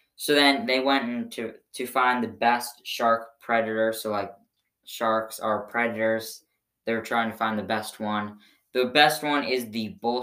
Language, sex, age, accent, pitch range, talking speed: English, female, 10-29, American, 110-130 Hz, 170 wpm